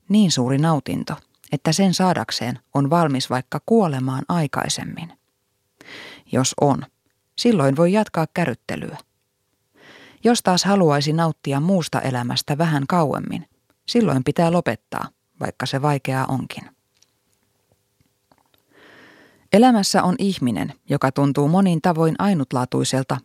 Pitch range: 130-185 Hz